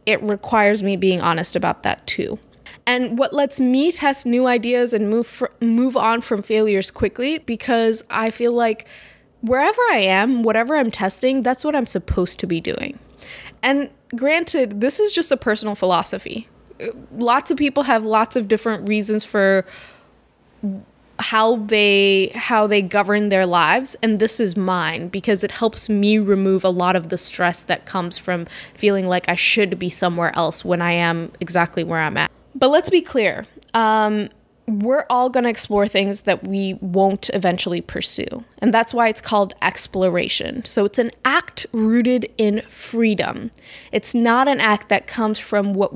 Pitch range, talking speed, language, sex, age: 195-240 Hz, 170 wpm, English, female, 10-29